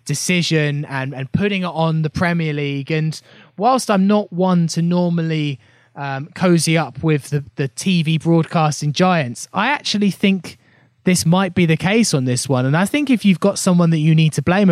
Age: 20-39